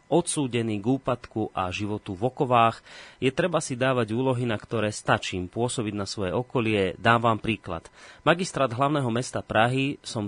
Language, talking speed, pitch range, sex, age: Slovak, 150 wpm, 110-130 Hz, male, 30-49